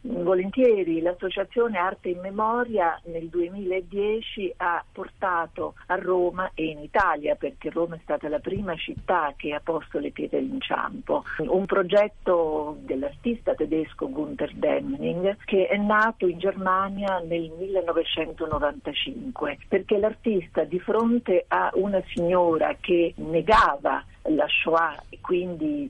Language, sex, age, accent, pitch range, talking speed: Italian, female, 50-69, native, 165-215 Hz, 125 wpm